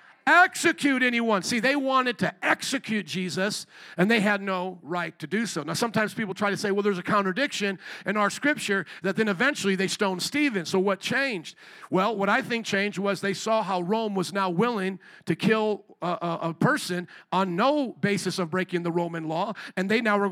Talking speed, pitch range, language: 205 wpm, 190-240 Hz, English